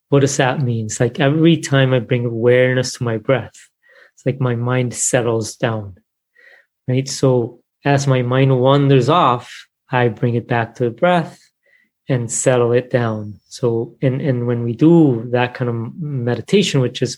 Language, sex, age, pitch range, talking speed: English, male, 30-49, 120-135 Hz, 175 wpm